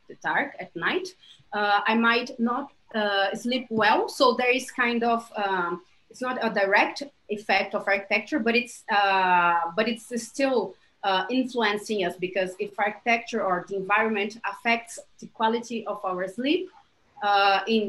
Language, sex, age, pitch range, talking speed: English, female, 30-49, 200-255 Hz, 155 wpm